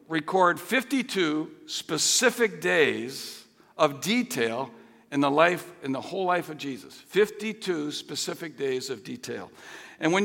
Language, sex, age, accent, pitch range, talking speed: English, male, 60-79, American, 155-210 Hz, 130 wpm